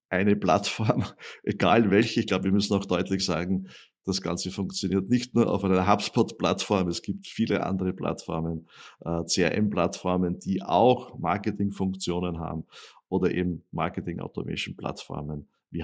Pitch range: 90-105 Hz